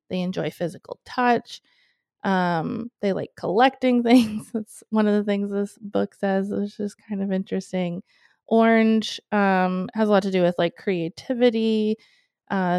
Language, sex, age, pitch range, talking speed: English, female, 20-39, 185-225 Hz, 155 wpm